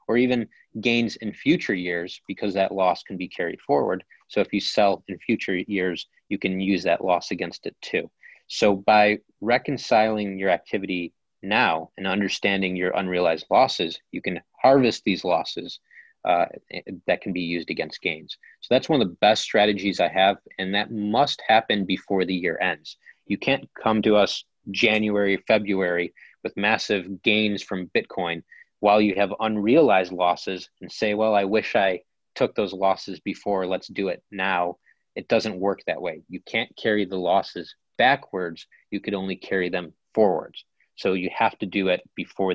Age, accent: 30-49, American